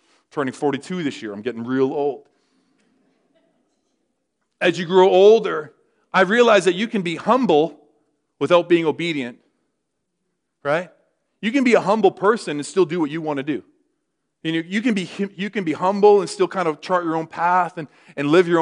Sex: male